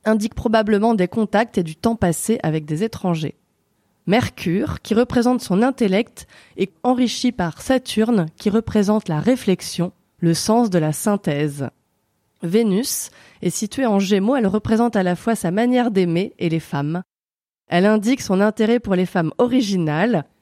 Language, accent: French, French